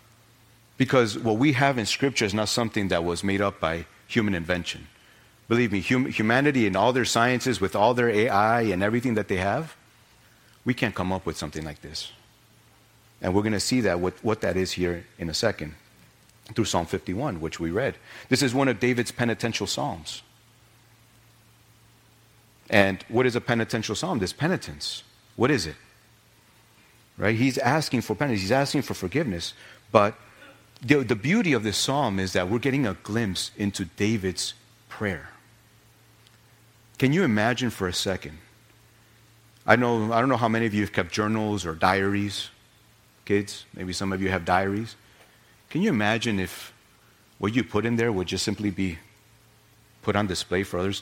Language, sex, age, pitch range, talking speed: English, male, 40-59, 100-120 Hz, 175 wpm